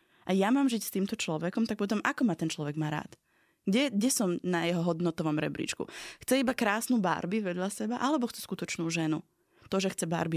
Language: Slovak